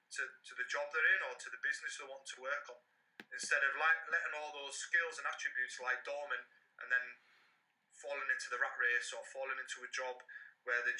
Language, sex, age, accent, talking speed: English, male, 30-49, British, 220 wpm